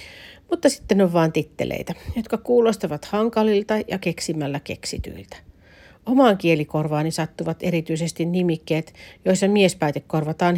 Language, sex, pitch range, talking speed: Finnish, female, 150-195 Hz, 100 wpm